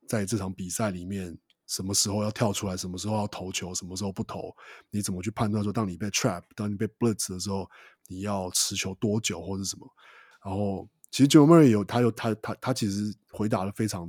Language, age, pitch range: Chinese, 20-39, 95-115 Hz